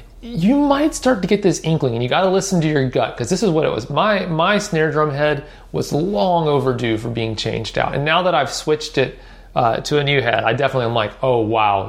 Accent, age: American, 30-49